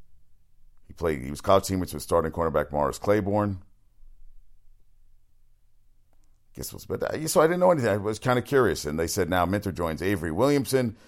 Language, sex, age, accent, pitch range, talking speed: English, male, 50-69, American, 80-105 Hz, 175 wpm